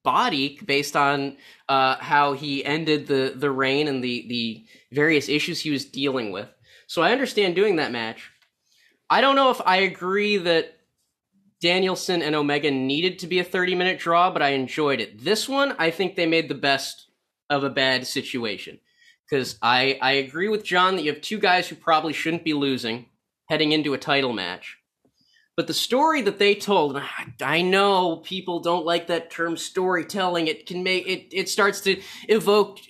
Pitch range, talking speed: 135-190 Hz, 185 wpm